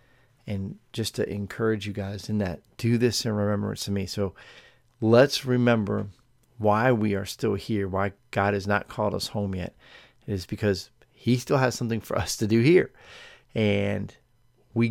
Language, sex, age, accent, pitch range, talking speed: English, male, 40-59, American, 100-120 Hz, 175 wpm